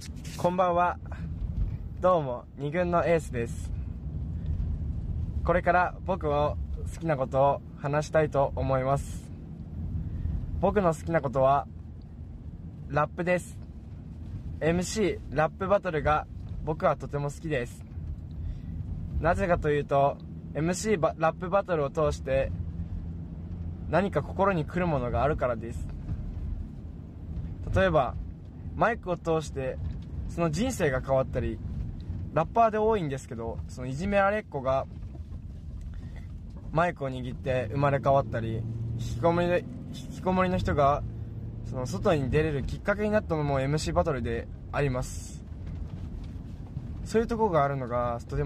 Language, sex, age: Japanese, male, 20-39